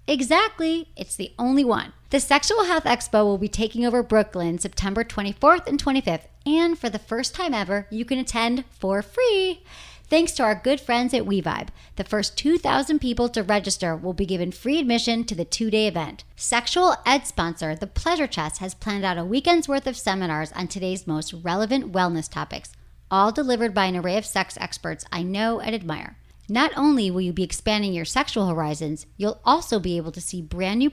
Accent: American